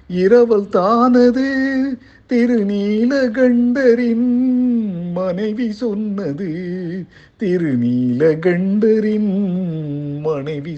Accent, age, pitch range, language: native, 50-69, 130-200 Hz, Tamil